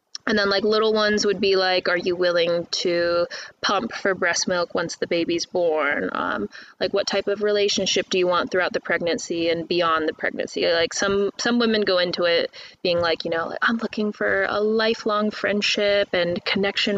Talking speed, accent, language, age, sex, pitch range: 195 wpm, American, English, 20-39, female, 175-215 Hz